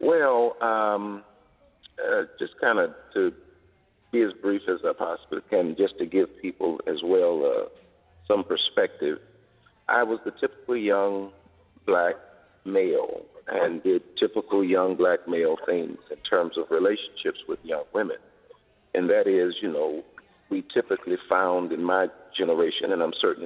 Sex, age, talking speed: male, 50-69, 150 wpm